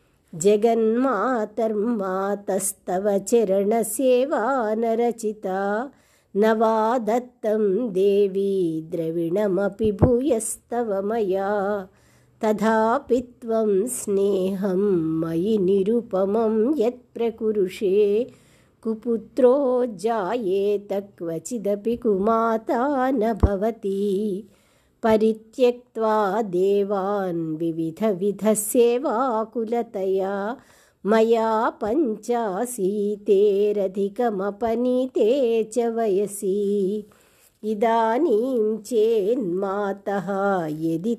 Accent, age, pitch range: native, 50-69, 195-230 Hz